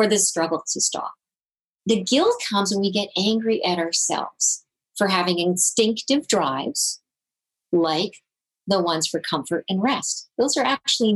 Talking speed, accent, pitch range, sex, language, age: 145 wpm, American, 170-215 Hz, female, English, 50-69